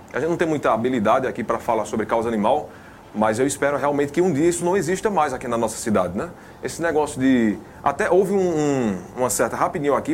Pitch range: 130-170 Hz